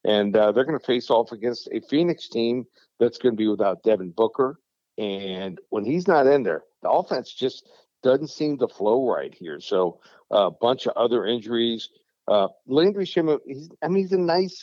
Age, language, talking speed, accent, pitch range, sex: 50-69, English, 195 wpm, American, 105-130 Hz, male